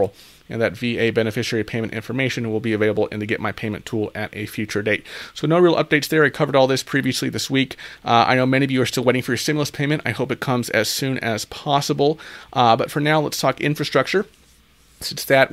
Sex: male